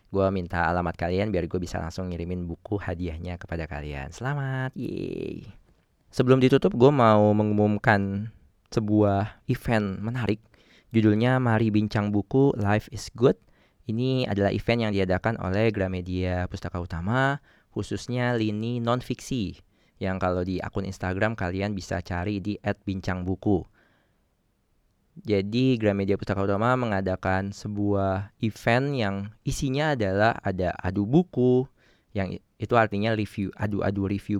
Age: 20-39